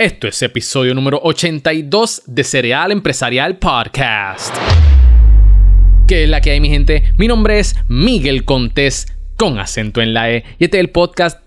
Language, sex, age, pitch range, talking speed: Spanish, male, 20-39, 115-160 Hz, 160 wpm